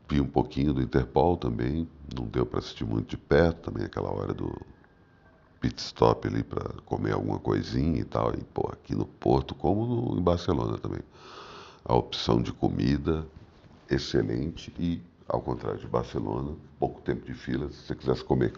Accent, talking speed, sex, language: Brazilian, 175 wpm, male, Portuguese